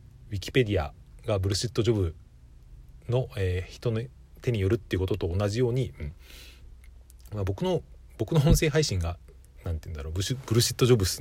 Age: 40-59